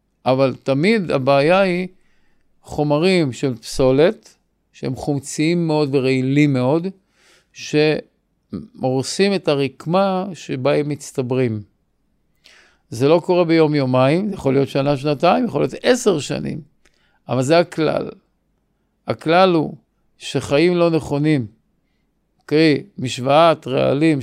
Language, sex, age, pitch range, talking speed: Hebrew, male, 50-69, 140-175 Hz, 100 wpm